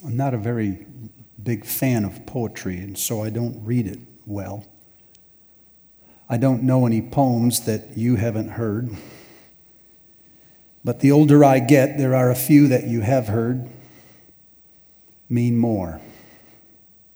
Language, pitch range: English, 105-130 Hz